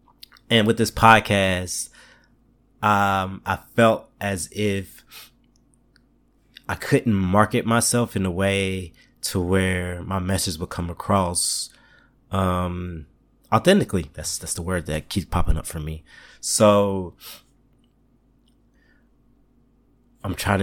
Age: 20-39